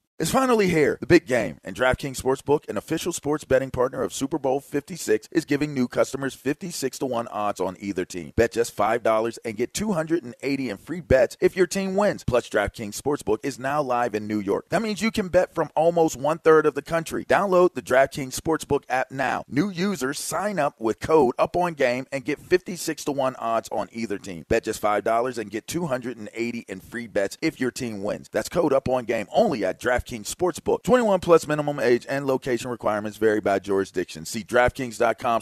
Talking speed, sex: 200 wpm, male